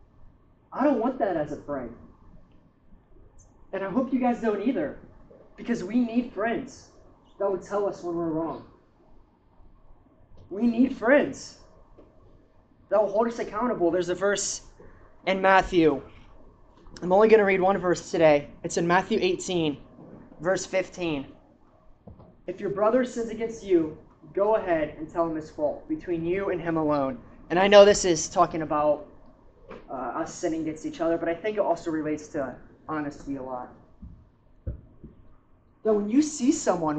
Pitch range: 155-225 Hz